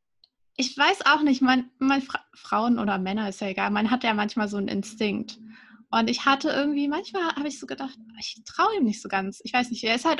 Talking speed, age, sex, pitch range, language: 240 wpm, 20-39, female, 210-255 Hz, German